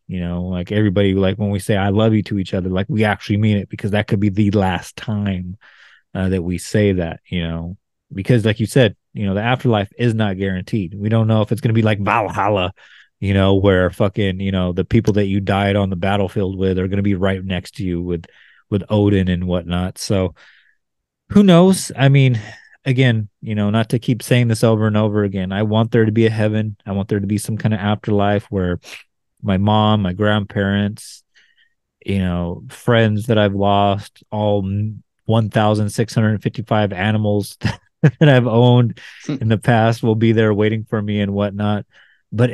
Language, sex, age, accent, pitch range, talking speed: English, male, 30-49, American, 95-110 Hz, 205 wpm